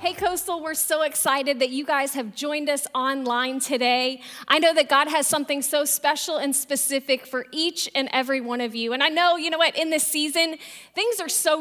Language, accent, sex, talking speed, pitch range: English, American, female, 215 wpm, 270-330 Hz